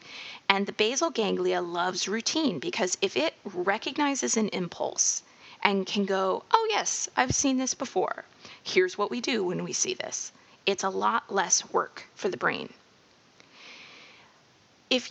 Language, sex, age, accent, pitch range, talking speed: English, female, 30-49, American, 190-250 Hz, 150 wpm